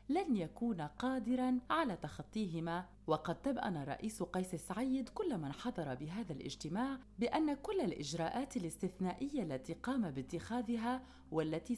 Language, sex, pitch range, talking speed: Arabic, female, 155-250 Hz, 115 wpm